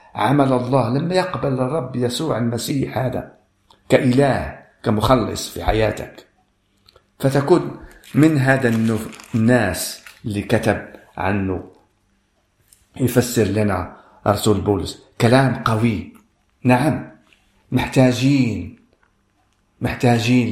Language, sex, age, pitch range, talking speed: Arabic, male, 50-69, 105-125 Hz, 80 wpm